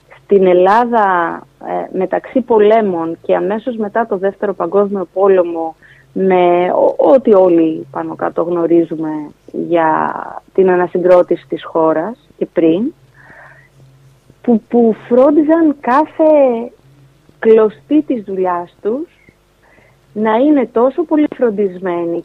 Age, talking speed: 30-49, 100 wpm